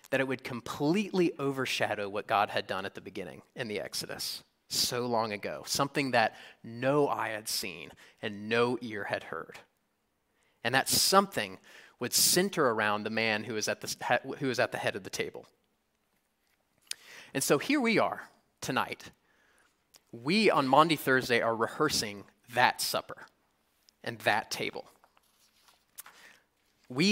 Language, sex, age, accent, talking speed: English, male, 30-49, American, 140 wpm